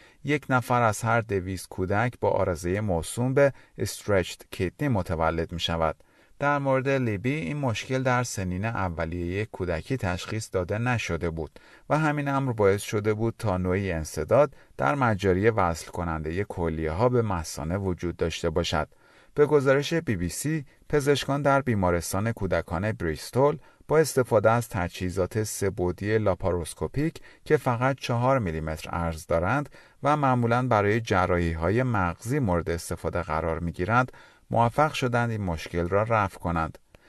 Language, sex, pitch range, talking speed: Persian, male, 85-130 Hz, 140 wpm